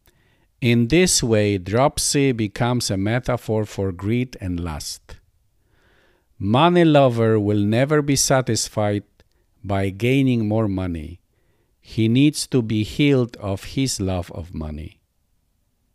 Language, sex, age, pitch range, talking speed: English, male, 50-69, 95-125 Hz, 115 wpm